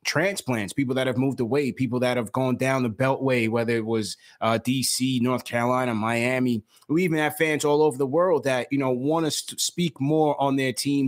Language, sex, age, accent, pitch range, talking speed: English, male, 20-39, American, 120-140 Hz, 210 wpm